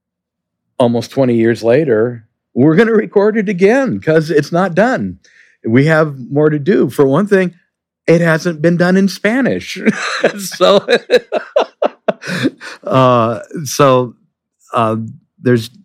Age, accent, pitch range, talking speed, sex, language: 50-69, American, 110-170 Hz, 125 wpm, male, English